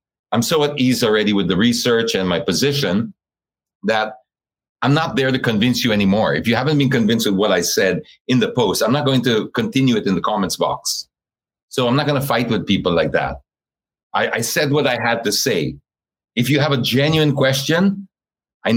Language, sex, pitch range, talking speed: English, male, 110-140 Hz, 210 wpm